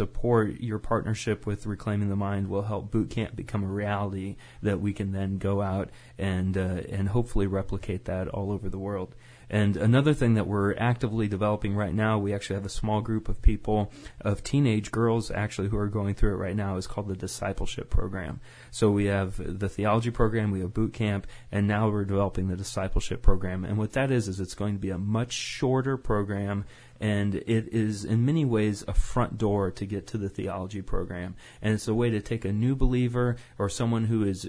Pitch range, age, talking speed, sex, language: 100-115 Hz, 30-49, 210 wpm, male, English